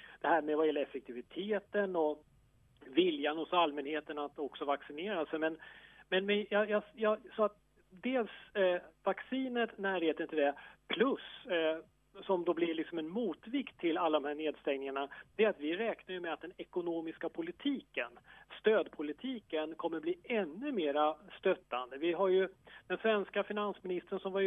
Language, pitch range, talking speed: English, 155-185 Hz, 160 wpm